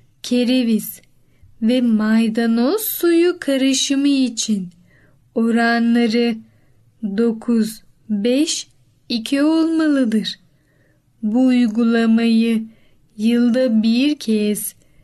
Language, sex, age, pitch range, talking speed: Turkish, female, 10-29, 220-290 Hz, 55 wpm